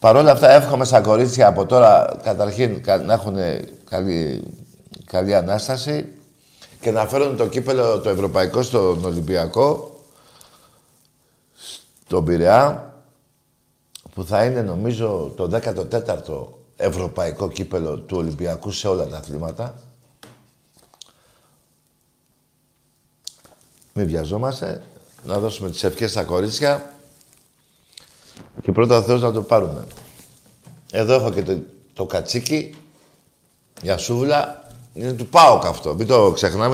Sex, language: male, Greek